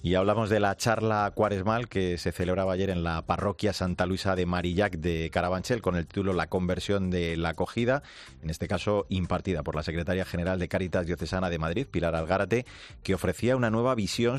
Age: 40-59